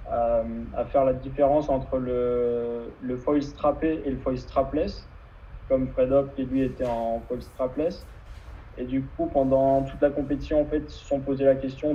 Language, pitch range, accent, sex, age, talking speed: French, 125-145 Hz, French, male, 20-39, 190 wpm